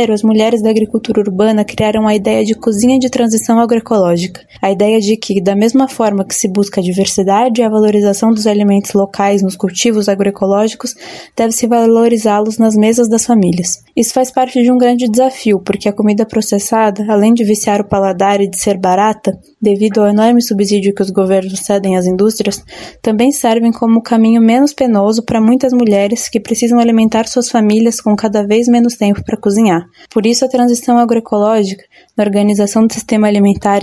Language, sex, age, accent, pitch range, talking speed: Portuguese, female, 20-39, Brazilian, 205-230 Hz, 180 wpm